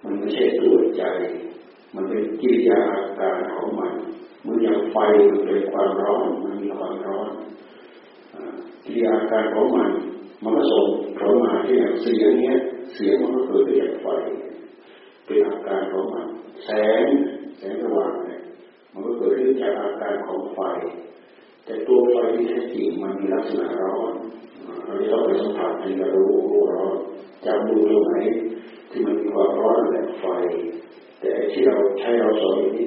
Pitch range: 350-400 Hz